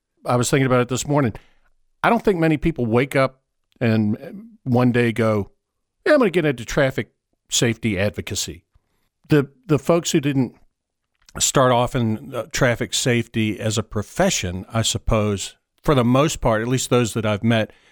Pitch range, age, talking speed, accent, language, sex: 110-145 Hz, 50-69, 170 wpm, American, English, male